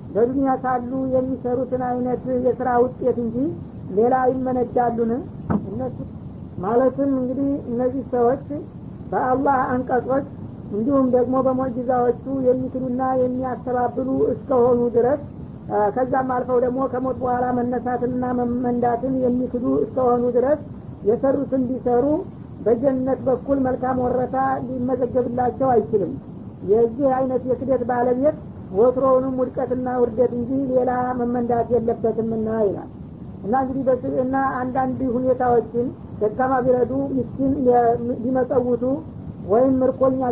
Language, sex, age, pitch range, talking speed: Amharic, female, 50-69, 245-260 Hz, 85 wpm